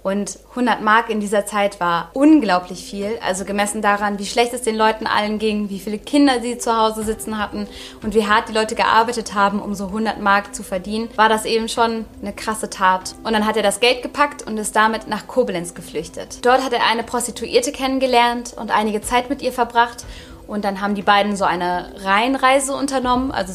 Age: 20-39